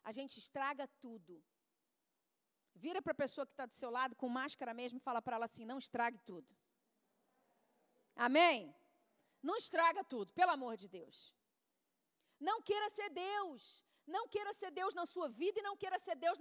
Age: 40-59